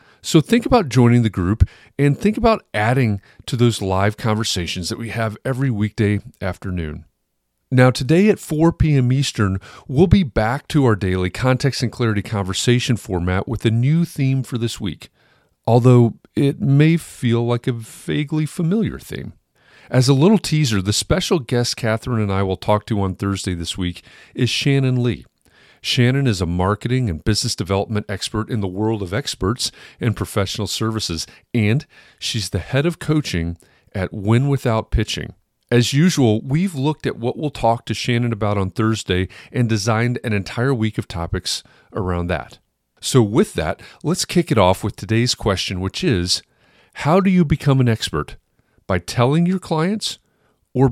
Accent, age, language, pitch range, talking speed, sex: American, 40-59, English, 100-135 Hz, 170 wpm, male